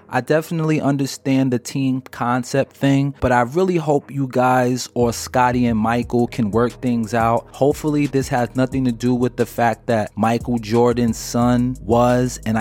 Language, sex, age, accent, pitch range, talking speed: English, male, 30-49, American, 115-135 Hz, 170 wpm